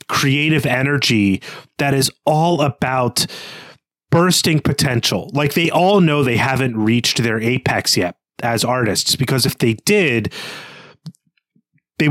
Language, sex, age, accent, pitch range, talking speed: English, male, 30-49, American, 115-150 Hz, 125 wpm